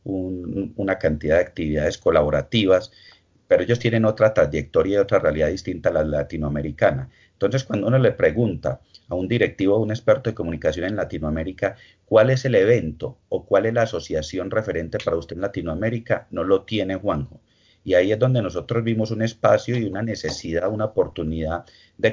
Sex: male